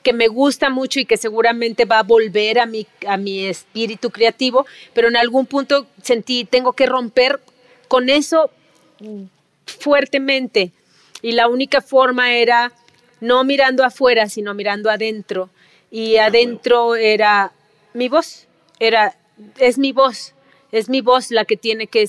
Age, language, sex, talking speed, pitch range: 30-49, Spanish, female, 145 wpm, 215-245 Hz